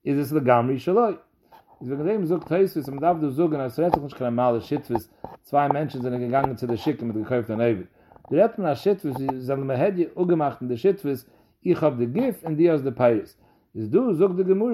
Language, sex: English, male